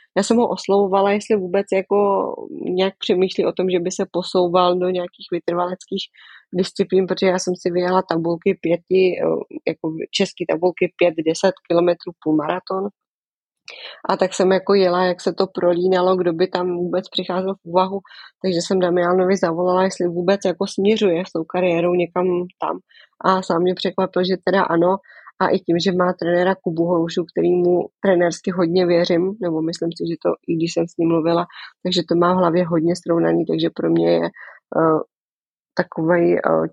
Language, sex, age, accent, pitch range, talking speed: Czech, female, 20-39, native, 170-185 Hz, 175 wpm